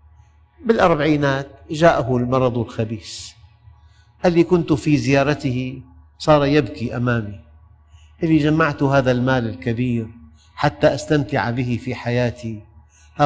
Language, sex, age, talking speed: Arabic, male, 50-69, 100 wpm